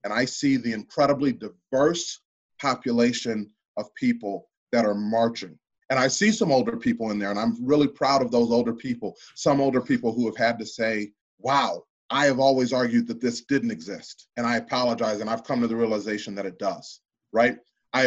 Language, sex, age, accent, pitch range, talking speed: English, male, 30-49, American, 115-145 Hz, 195 wpm